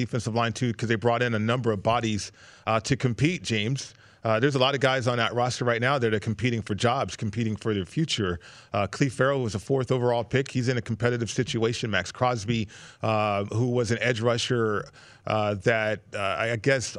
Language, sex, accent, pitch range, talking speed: English, male, American, 115-140 Hz, 215 wpm